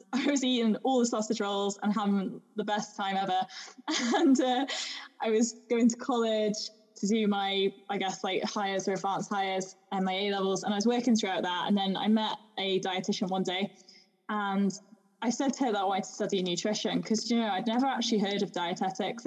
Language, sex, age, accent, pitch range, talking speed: English, female, 10-29, British, 195-235 Hz, 210 wpm